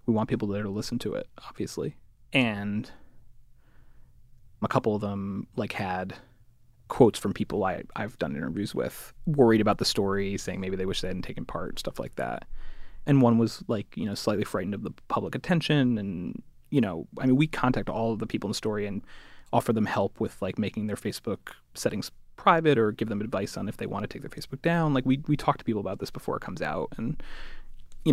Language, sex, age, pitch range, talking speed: English, male, 30-49, 100-130 Hz, 220 wpm